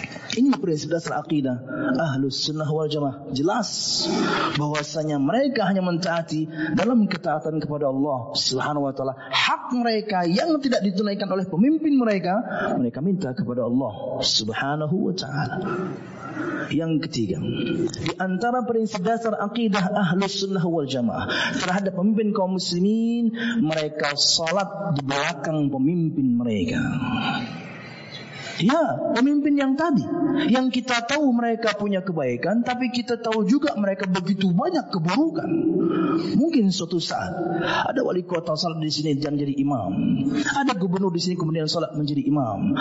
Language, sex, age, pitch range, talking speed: Indonesian, male, 30-49, 155-235 Hz, 130 wpm